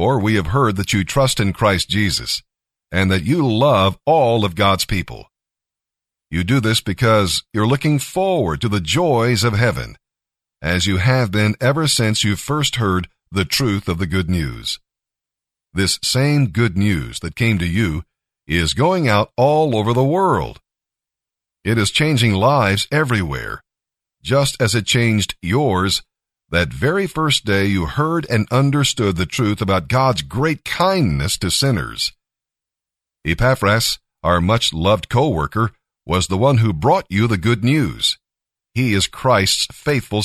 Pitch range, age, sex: 95-130 Hz, 50-69, male